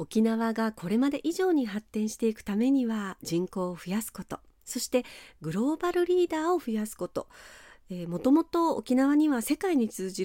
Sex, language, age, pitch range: female, Japanese, 40-59, 180-270 Hz